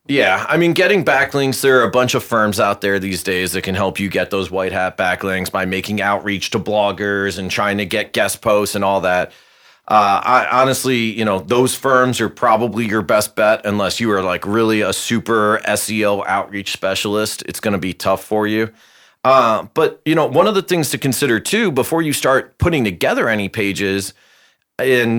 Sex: male